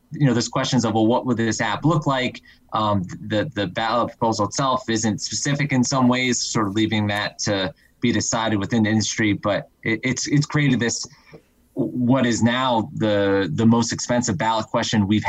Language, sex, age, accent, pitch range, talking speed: English, male, 20-39, American, 105-125 Hz, 190 wpm